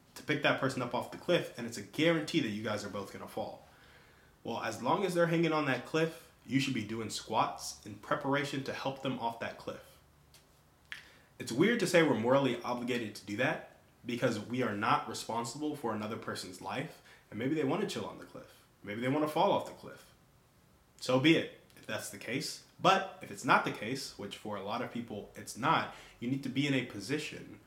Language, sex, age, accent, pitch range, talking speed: English, male, 20-39, American, 110-145 Hz, 225 wpm